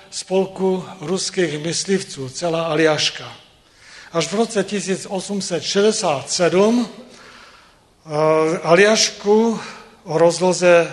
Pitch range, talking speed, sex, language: 150-195 Hz, 65 wpm, male, Czech